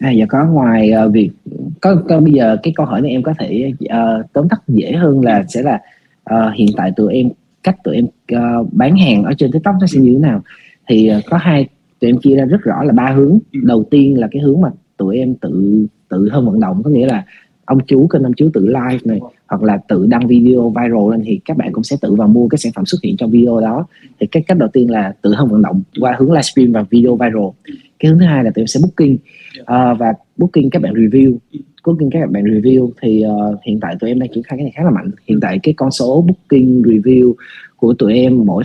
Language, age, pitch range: Vietnamese, 20-39, 120-170 Hz